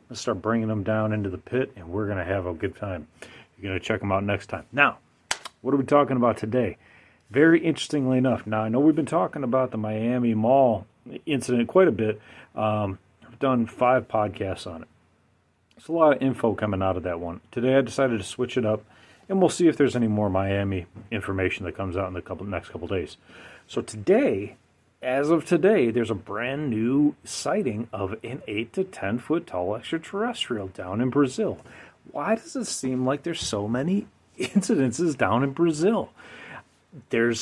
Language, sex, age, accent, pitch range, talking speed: English, male, 40-59, American, 105-140 Hz, 200 wpm